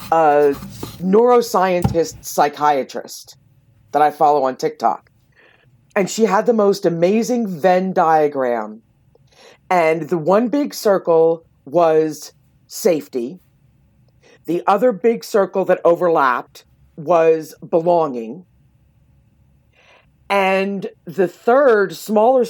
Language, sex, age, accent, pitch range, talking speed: English, female, 50-69, American, 135-205 Hz, 95 wpm